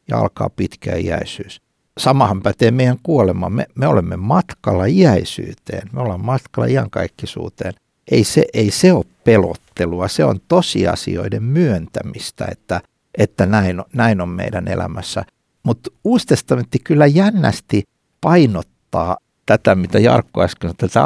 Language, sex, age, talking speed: Finnish, male, 60-79, 125 wpm